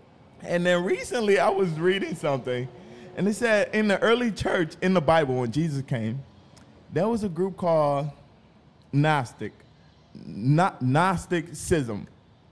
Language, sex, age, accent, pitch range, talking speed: English, male, 20-39, American, 125-165 Hz, 130 wpm